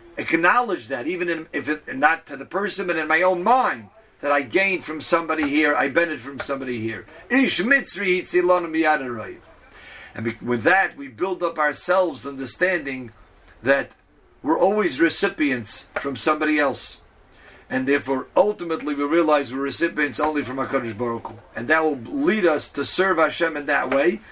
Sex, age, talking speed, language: male, 50-69, 150 wpm, English